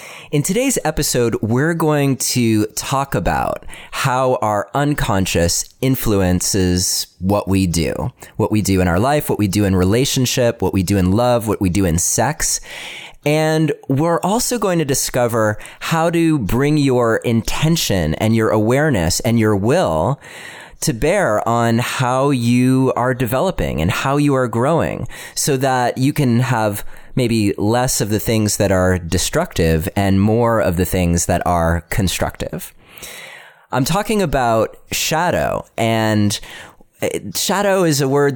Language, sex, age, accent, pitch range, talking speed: English, male, 30-49, American, 100-140 Hz, 150 wpm